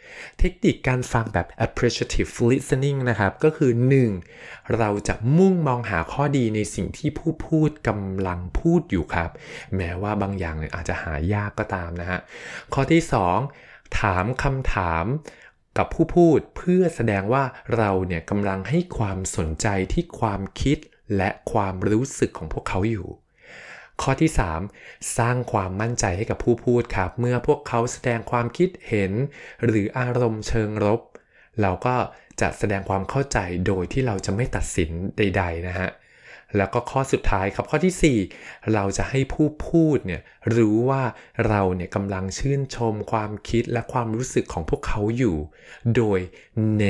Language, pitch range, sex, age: Thai, 95-130 Hz, male, 20-39